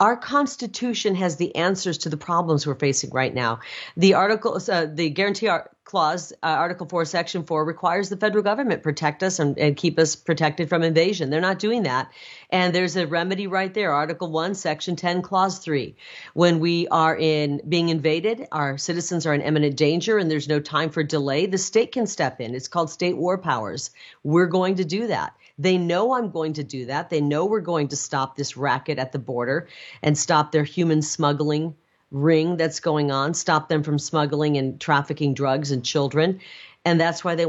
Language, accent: English, American